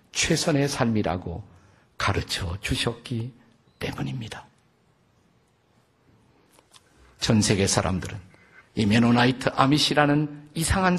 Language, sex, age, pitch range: Korean, male, 50-69, 105-155 Hz